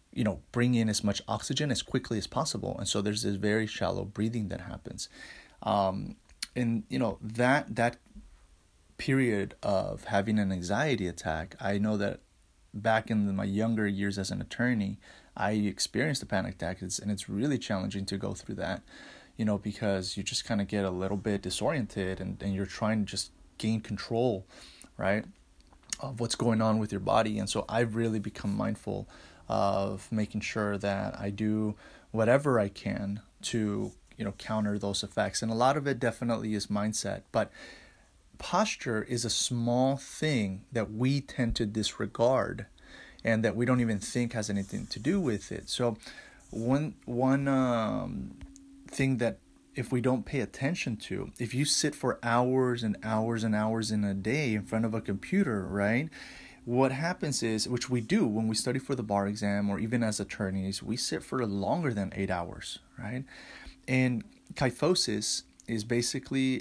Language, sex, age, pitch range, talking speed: English, male, 20-39, 100-120 Hz, 175 wpm